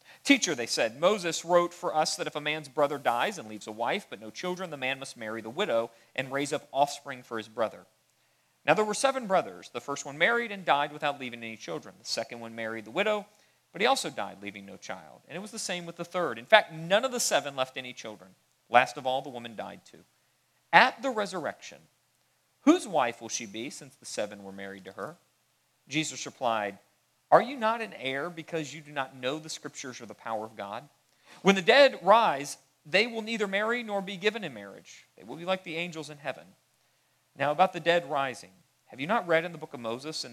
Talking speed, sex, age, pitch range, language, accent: 230 wpm, male, 40-59, 120-180 Hz, English, American